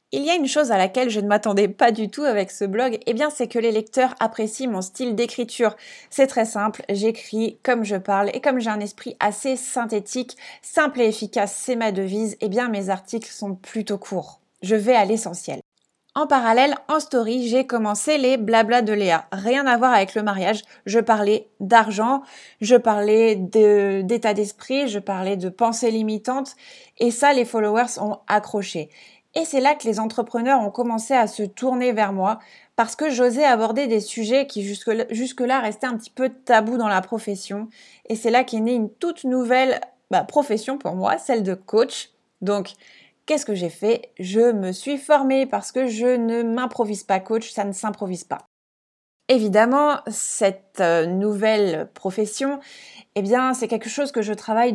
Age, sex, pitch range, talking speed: 20-39, female, 205-250 Hz, 180 wpm